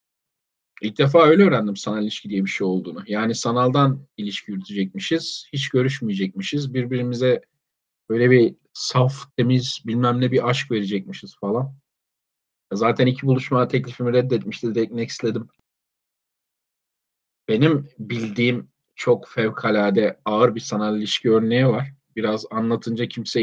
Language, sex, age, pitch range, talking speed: Turkish, male, 40-59, 115-140 Hz, 120 wpm